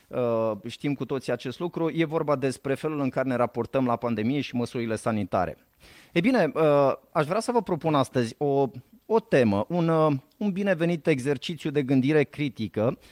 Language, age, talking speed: Romanian, 30-49, 180 wpm